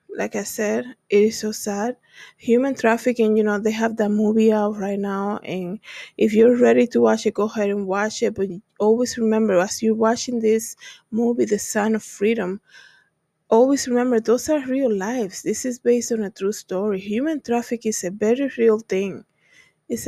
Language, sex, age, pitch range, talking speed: English, female, 20-39, 205-240 Hz, 190 wpm